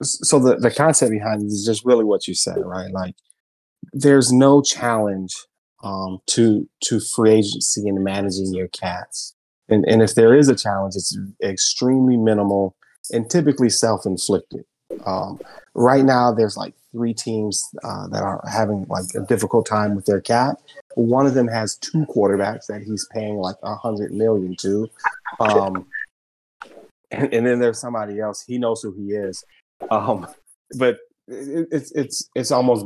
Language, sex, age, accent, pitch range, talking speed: English, male, 30-49, American, 100-125 Hz, 165 wpm